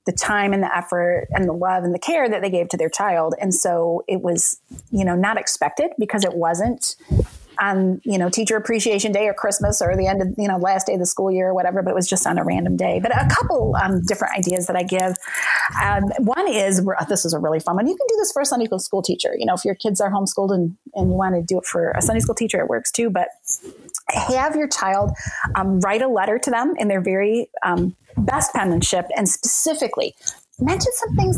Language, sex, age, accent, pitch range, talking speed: English, female, 30-49, American, 180-215 Hz, 245 wpm